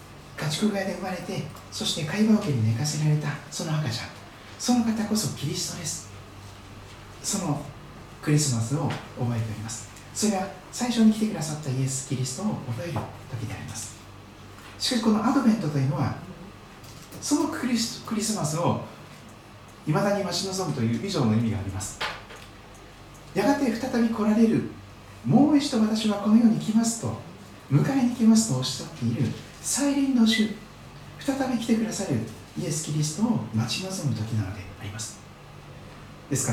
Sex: male